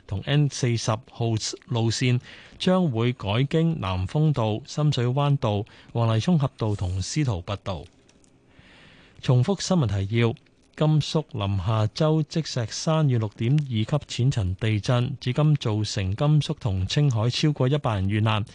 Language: Chinese